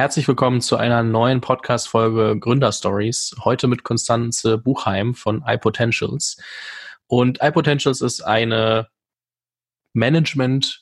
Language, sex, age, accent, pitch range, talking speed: German, male, 20-39, German, 110-130 Hz, 100 wpm